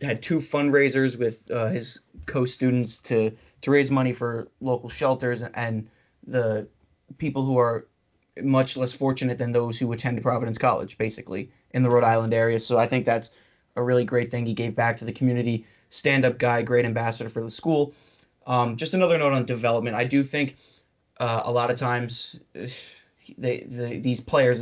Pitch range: 115-130 Hz